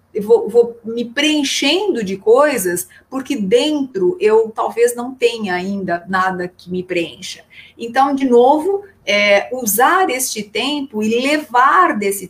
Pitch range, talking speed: 200-280 Hz, 125 wpm